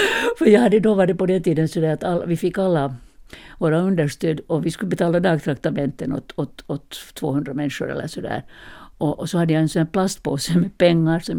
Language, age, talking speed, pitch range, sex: Swedish, 60-79, 210 wpm, 145-190 Hz, female